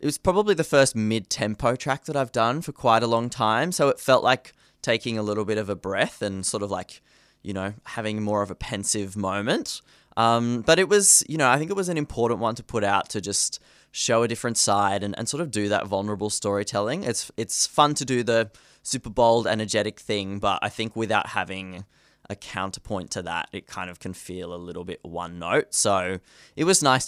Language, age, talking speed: English, 20-39, 225 wpm